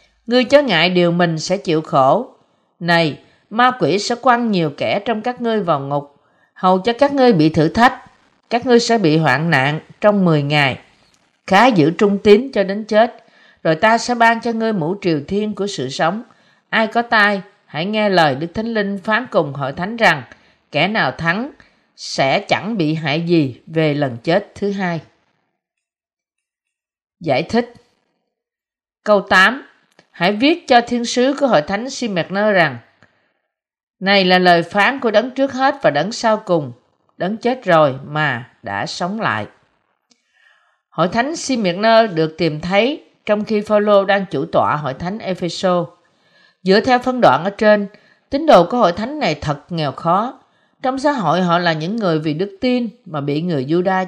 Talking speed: 175 wpm